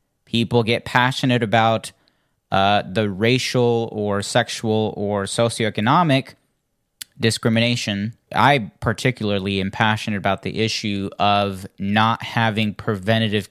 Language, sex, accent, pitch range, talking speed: English, male, American, 100-120 Hz, 100 wpm